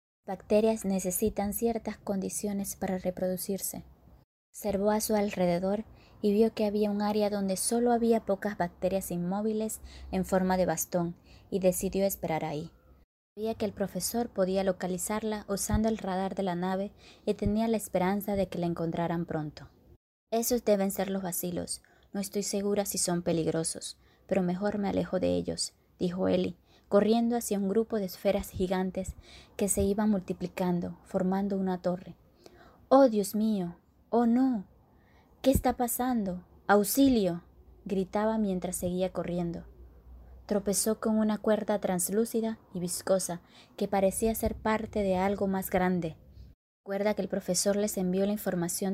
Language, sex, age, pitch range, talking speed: Spanish, female, 20-39, 185-215 Hz, 145 wpm